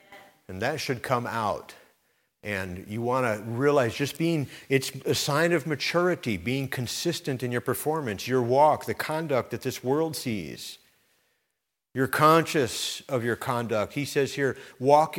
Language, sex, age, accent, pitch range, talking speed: English, male, 50-69, American, 110-145 Hz, 155 wpm